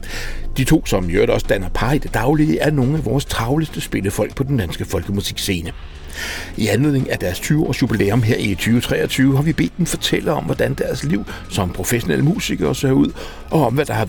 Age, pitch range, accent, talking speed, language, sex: 60-79, 95-130 Hz, native, 200 wpm, Danish, male